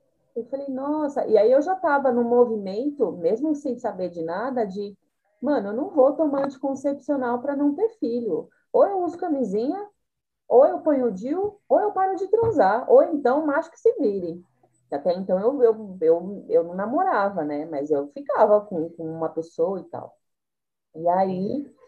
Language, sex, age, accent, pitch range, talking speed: Portuguese, female, 30-49, Brazilian, 185-285 Hz, 185 wpm